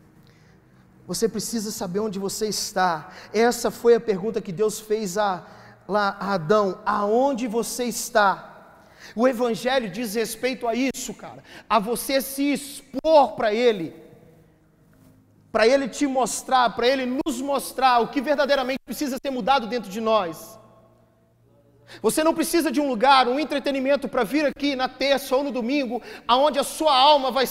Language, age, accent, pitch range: Gujarati, 40-59, Brazilian, 225-315 Hz